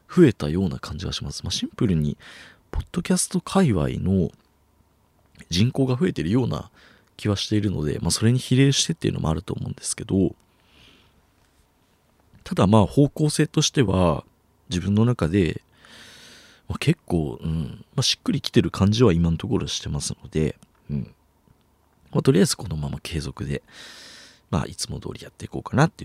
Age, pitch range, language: 40-59, 90-130 Hz, Japanese